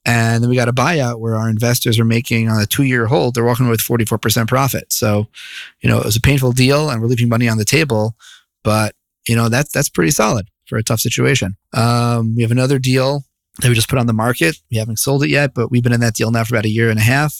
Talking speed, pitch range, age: 270 wpm, 110-125 Hz, 30-49